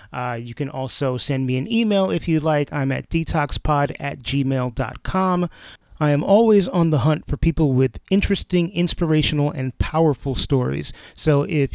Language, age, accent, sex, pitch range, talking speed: English, 30-49, American, male, 130-165 Hz, 165 wpm